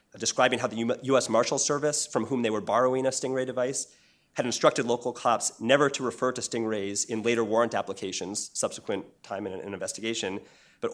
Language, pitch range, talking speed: English, 110-130 Hz, 185 wpm